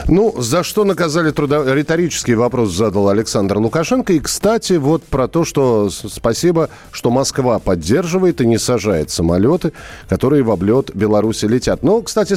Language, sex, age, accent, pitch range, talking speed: Russian, male, 40-59, native, 100-160 Hz, 145 wpm